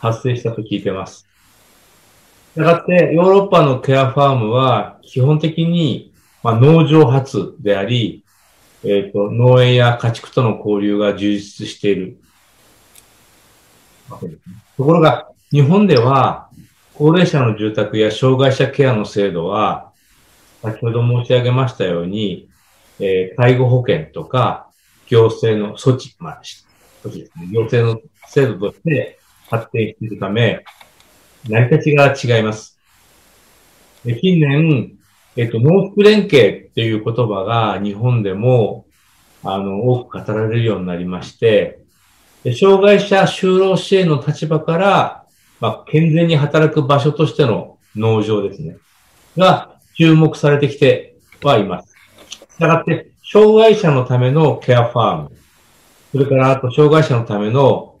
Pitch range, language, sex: 110-155 Hz, English, male